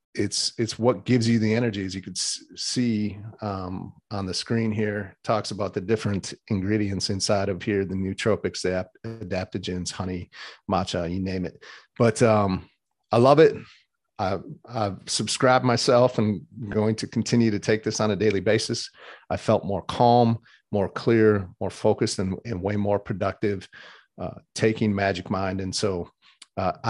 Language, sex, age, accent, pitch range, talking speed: English, male, 40-59, American, 100-120 Hz, 160 wpm